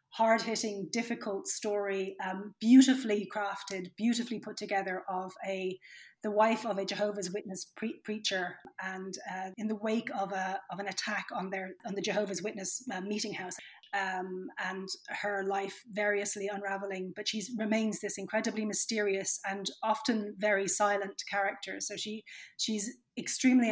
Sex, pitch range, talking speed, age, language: female, 195-220 Hz, 150 wpm, 30-49, English